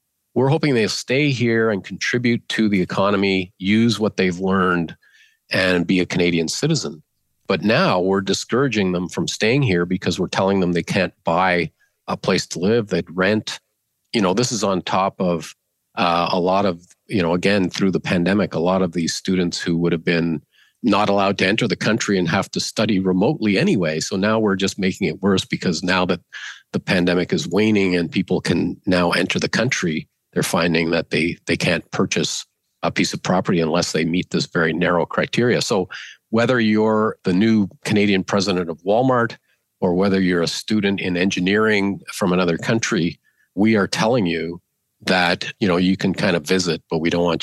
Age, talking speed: 40-59, 190 wpm